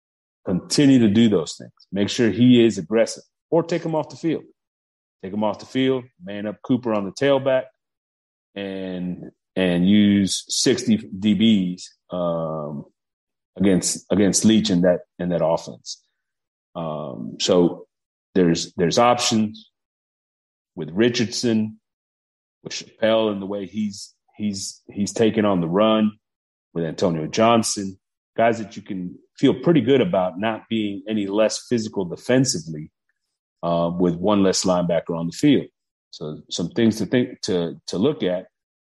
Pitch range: 90-115 Hz